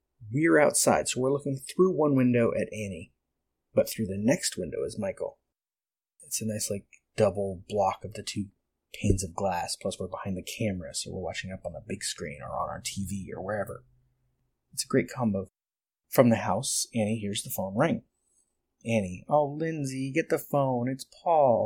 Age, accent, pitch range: 30-49, American, 105-130 Hz